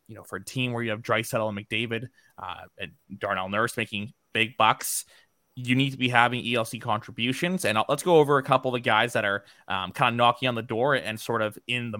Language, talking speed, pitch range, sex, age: English, 245 wpm, 105-130 Hz, male, 20-39